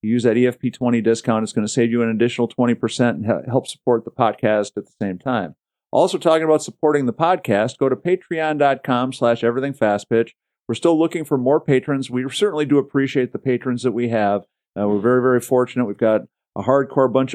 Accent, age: American, 50-69